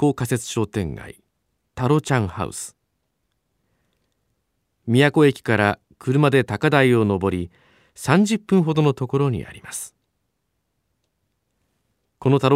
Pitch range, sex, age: 100-155 Hz, male, 40-59